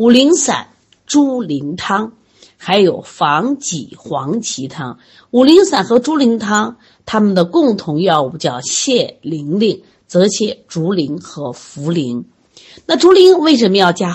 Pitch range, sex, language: 165-250 Hz, female, Chinese